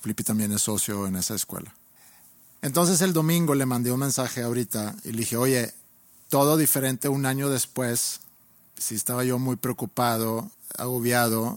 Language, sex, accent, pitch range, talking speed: Spanish, male, Mexican, 105-125 Hz, 160 wpm